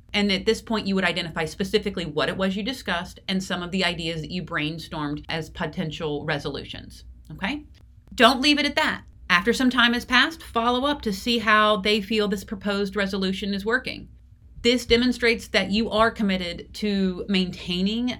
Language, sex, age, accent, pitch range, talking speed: English, female, 30-49, American, 180-230 Hz, 180 wpm